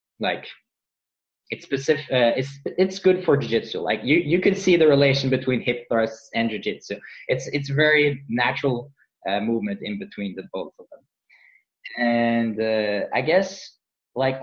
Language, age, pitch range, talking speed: English, 20-39, 110-130 Hz, 160 wpm